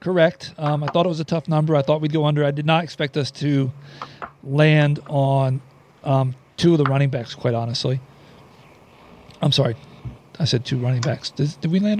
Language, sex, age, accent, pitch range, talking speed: English, male, 40-59, American, 135-165 Hz, 205 wpm